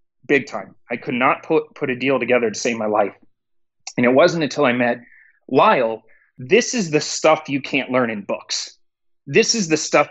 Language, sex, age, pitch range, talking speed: English, male, 30-49, 115-150 Hz, 200 wpm